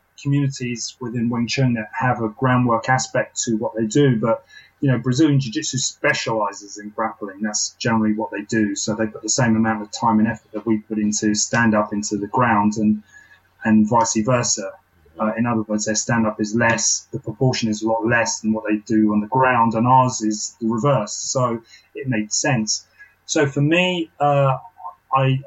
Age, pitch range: 30-49, 110-130 Hz